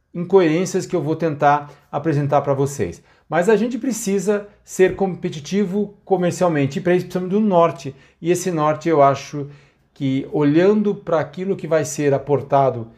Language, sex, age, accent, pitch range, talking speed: Portuguese, male, 50-69, Brazilian, 140-195 Hz, 155 wpm